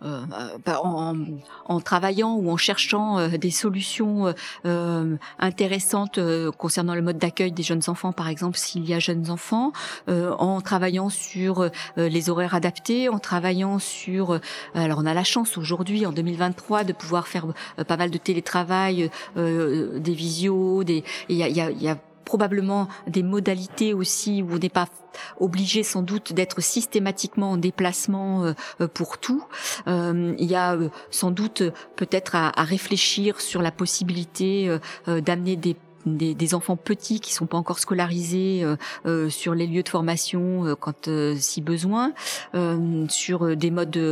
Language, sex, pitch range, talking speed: French, female, 165-190 Hz, 170 wpm